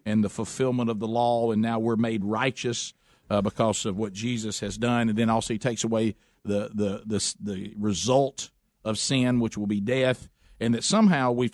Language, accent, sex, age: English, American, male, 50-69